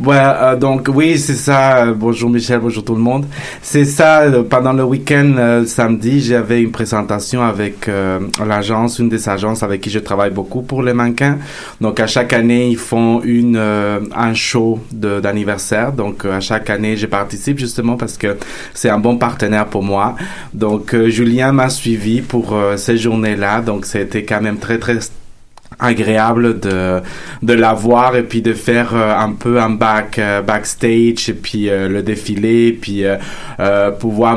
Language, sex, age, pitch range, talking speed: French, male, 30-49, 105-120 Hz, 180 wpm